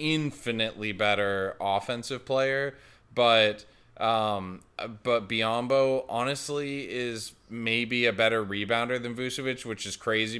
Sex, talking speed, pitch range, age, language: male, 110 wpm, 100-115 Hz, 20-39, English